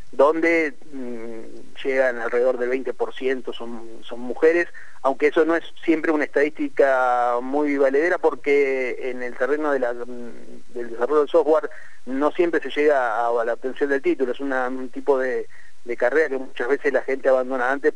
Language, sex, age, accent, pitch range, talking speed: Spanish, male, 30-49, Argentinian, 125-190 Hz, 175 wpm